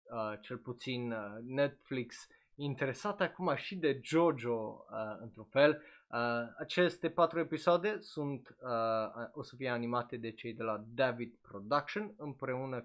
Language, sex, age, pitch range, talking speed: Romanian, male, 20-39, 115-155 Hz, 145 wpm